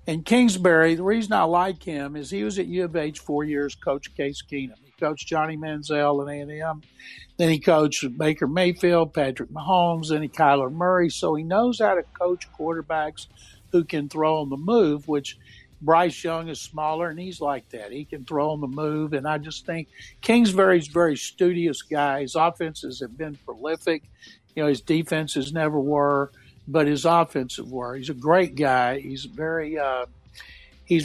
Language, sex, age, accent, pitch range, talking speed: English, male, 60-79, American, 140-165 Hz, 175 wpm